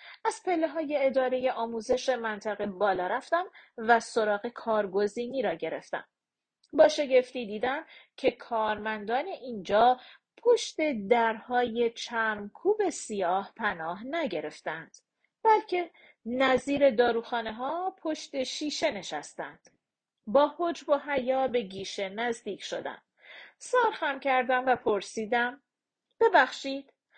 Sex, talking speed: female, 95 wpm